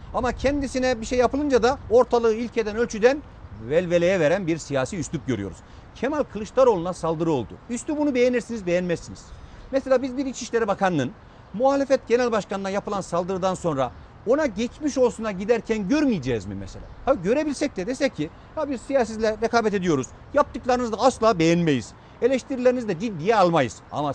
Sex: male